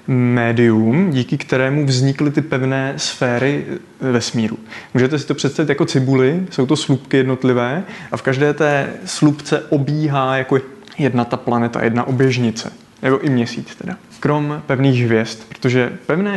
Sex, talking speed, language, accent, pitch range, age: male, 145 wpm, Czech, native, 130-150 Hz, 20-39